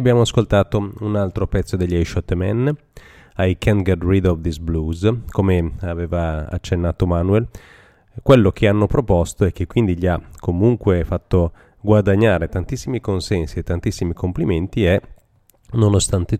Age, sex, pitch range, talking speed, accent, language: 30-49, male, 85-105 Hz, 145 wpm, native, Italian